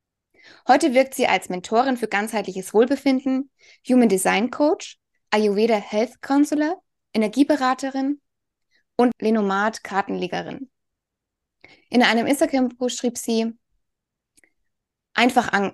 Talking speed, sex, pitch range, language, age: 95 wpm, female, 205-255 Hz, German, 20-39